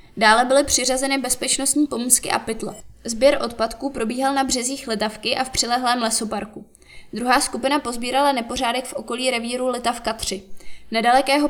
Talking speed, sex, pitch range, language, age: 140 wpm, female, 225-270 Hz, Czech, 20-39